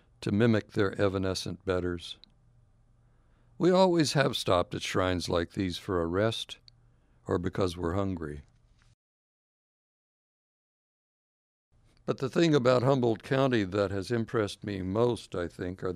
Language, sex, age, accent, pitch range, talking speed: English, male, 60-79, American, 90-120 Hz, 130 wpm